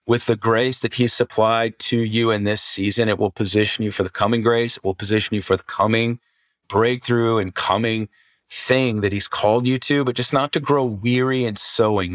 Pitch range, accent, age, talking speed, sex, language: 105-125 Hz, American, 30-49, 215 wpm, male, English